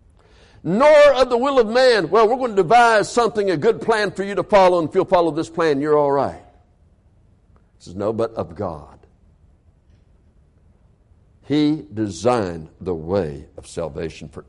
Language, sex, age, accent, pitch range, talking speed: English, male, 60-79, American, 90-150 Hz, 170 wpm